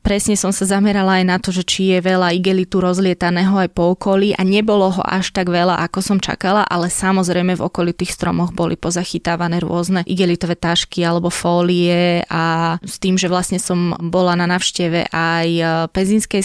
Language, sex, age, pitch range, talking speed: Slovak, female, 20-39, 175-195 Hz, 175 wpm